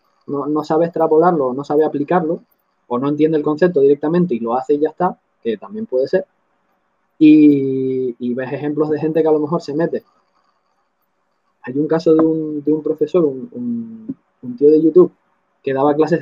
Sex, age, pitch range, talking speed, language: male, 20-39, 145-175 Hz, 190 wpm, Spanish